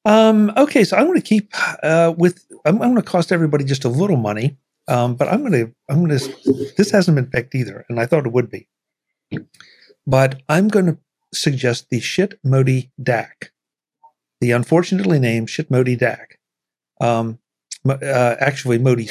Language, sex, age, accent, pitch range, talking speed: English, male, 50-69, American, 115-150 Hz, 180 wpm